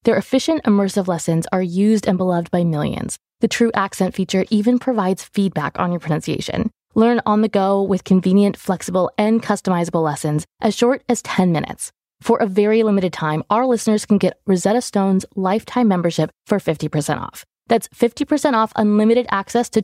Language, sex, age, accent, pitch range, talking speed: English, female, 20-39, American, 175-230 Hz, 170 wpm